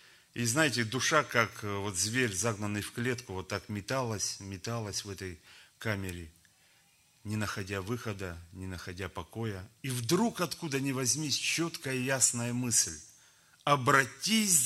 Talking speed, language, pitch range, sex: 130 wpm, German, 105-145 Hz, male